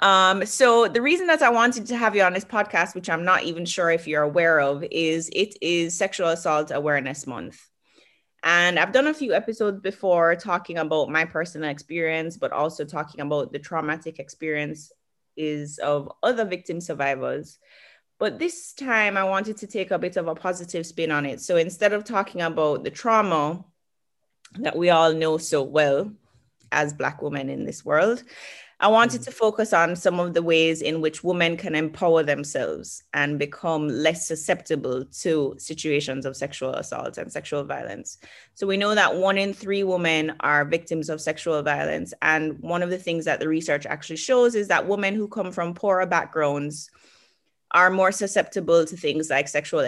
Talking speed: 185 wpm